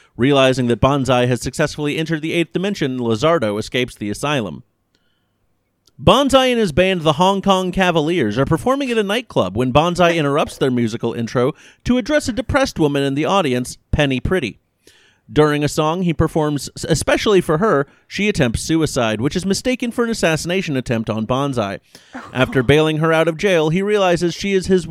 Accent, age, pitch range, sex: American, 30-49, 120-180 Hz, male